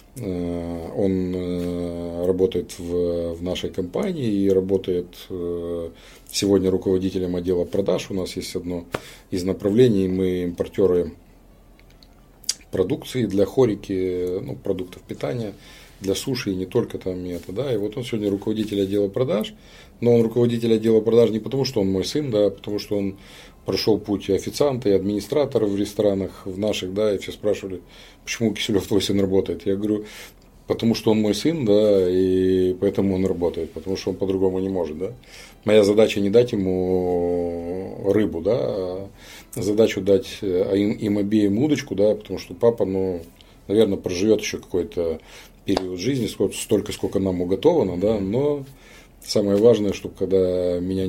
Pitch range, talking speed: 90-105 Hz, 155 wpm